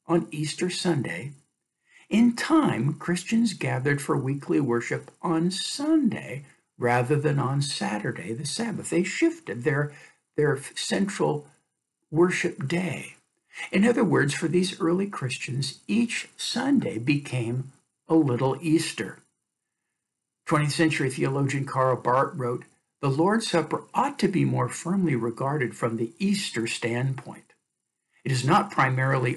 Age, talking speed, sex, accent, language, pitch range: 60-79, 125 wpm, male, American, English, 130-175 Hz